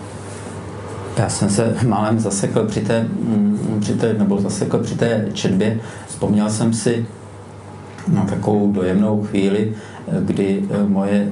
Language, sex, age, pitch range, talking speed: Czech, male, 50-69, 95-110 Hz, 95 wpm